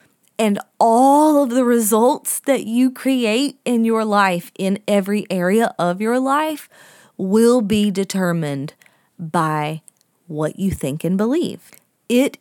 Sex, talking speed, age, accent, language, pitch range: female, 130 wpm, 20-39, American, English, 180-235 Hz